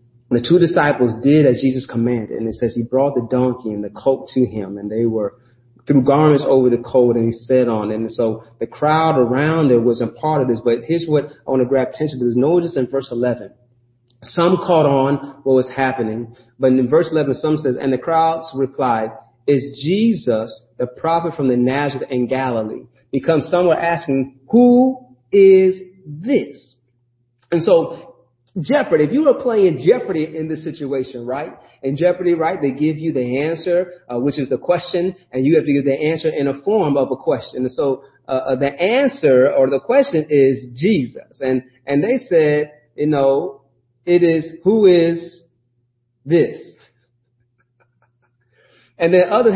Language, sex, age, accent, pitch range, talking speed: English, male, 30-49, American, 125-165 Hz, 180 wpm